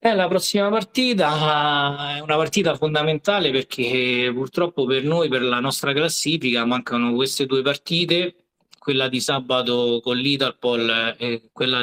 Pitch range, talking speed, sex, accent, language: 130-160 Hz, 135 wpm, male, native, Italian